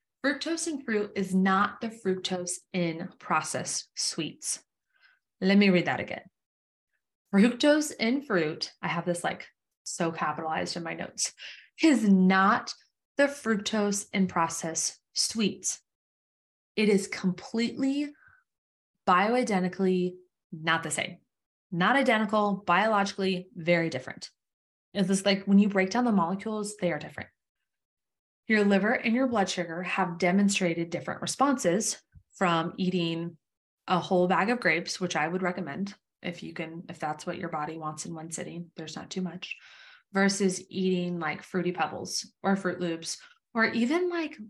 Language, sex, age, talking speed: English, female, 20-39, 145 wpm